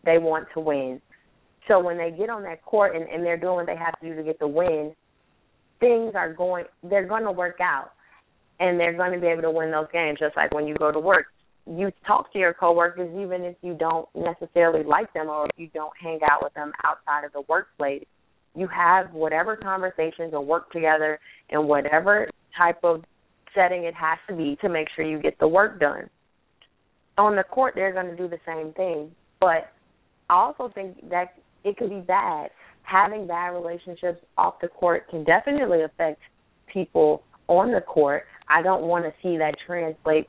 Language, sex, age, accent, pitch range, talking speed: English, female, 20-39, American, 155-185 Hz, 205 wpm